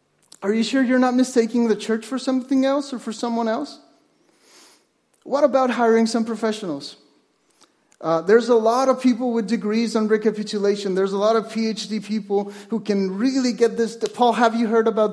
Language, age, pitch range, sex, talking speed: English, 30-49, 200-250 Hz, male, 180 wpm